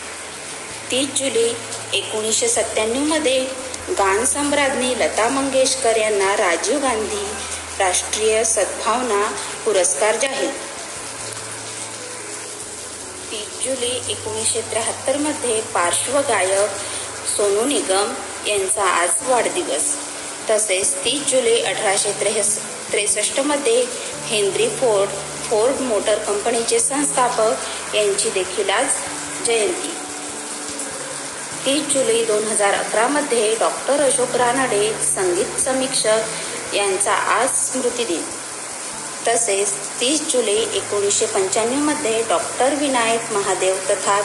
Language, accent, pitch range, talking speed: Marathi, native, 205-280 Hz, 85 wpm